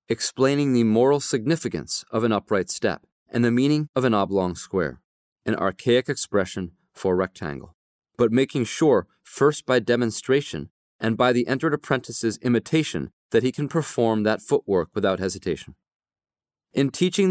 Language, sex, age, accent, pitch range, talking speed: English, male, 30-49, American, 105-140 Hz, 145 wpm